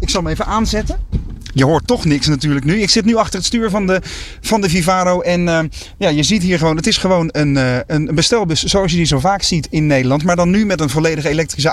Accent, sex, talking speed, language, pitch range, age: Dutch, male, 260 wpm, Dutch, 150-200 Hz, 30-49